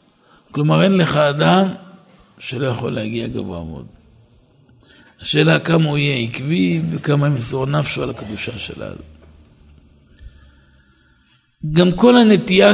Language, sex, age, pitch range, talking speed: Hebrew, male, 60-79, 110-155 Hz, 110 wpm